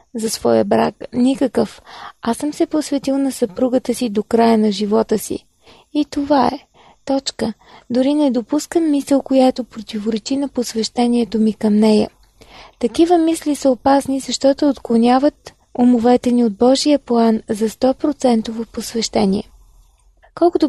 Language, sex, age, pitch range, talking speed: Bulgarian, female, 20-39, 225-275 Hz, 135 wpm